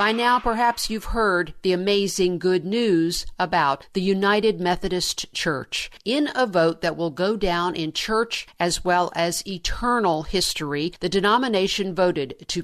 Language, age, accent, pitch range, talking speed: English, 50-69, American, 165-200 Hz, 150 wpm